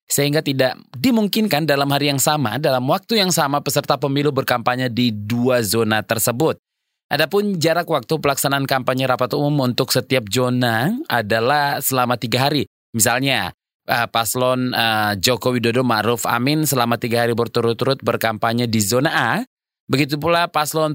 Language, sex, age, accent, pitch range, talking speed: Indonesian, male, 20-39, native, 120-155 Hz, 140 wpm